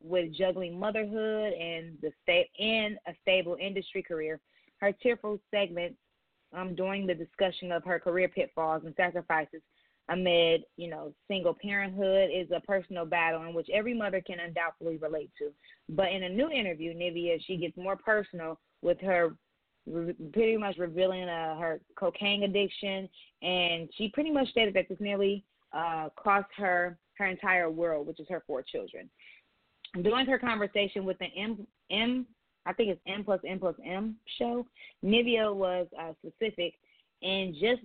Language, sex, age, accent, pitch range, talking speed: English, female, 20-39, American, 170-205 Hz, 160 wpm